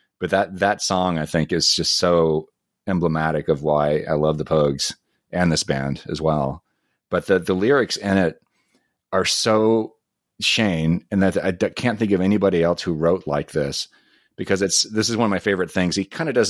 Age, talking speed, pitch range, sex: 40-59, 205 wpm, 80-95 Hz, male